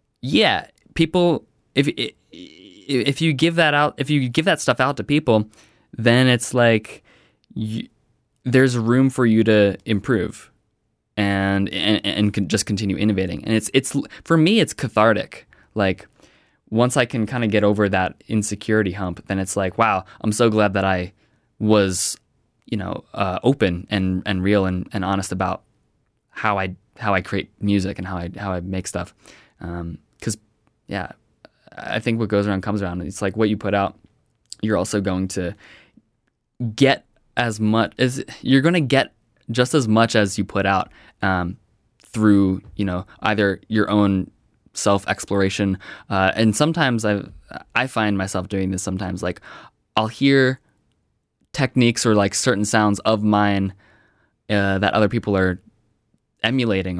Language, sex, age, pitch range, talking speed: English, male, 20-39, 95-120 Hz, 160 wpm